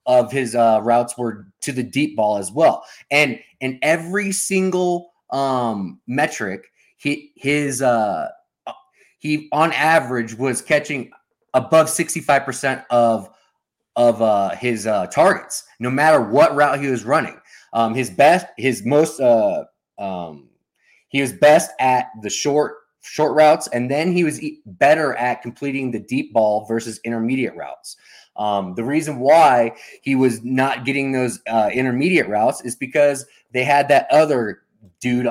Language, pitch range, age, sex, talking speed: English, 120-150 Hz, 20-39, male, 150 wpm